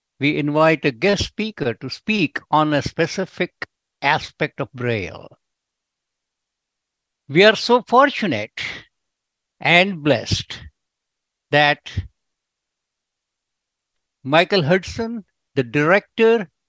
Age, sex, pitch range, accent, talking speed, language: 60-79, male, 135-185 Hz, Indian, 85 wpm, English